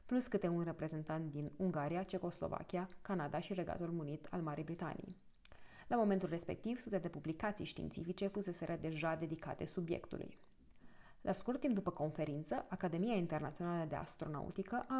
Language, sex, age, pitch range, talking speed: Romanian, female, 30-49, 155-190 Hz, 140 wpm